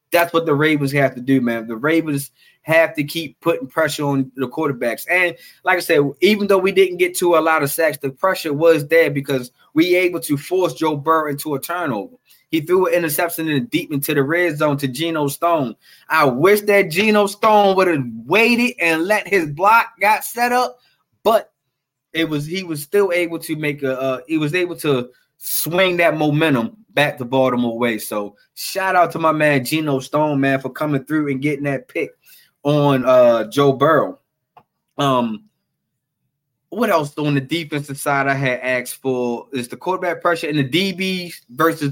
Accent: American